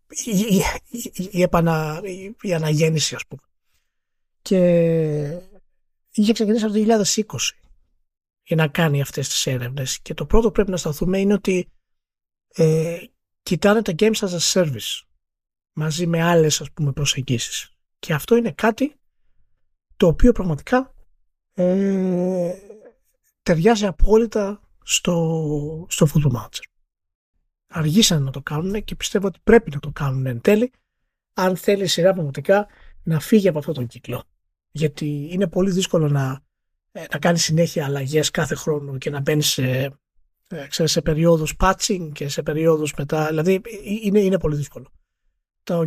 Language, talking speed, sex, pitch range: Greek, 140 wpm, male, 150-200 Hz